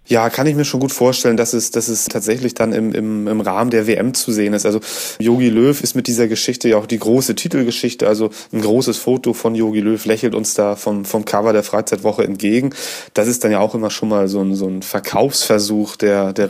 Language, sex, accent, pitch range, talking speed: German, male, German, 100-115 Hz, 235 wpm